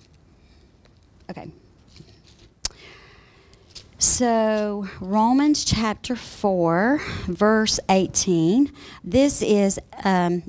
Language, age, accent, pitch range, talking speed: English, 40-59, American, 180-235 Hz, 55 wpm